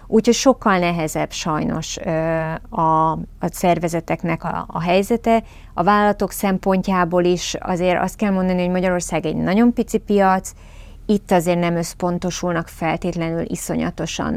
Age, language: 30-49, Hungarian